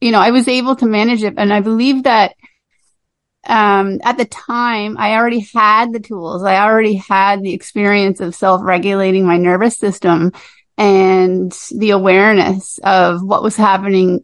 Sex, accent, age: female, American, 30-49